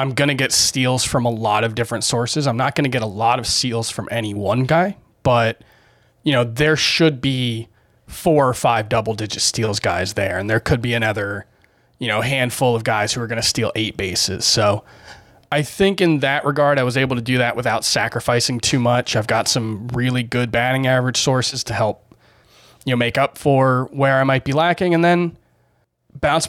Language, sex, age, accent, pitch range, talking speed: English, male, 20-39, American, 115-140 Hz, 205 wpm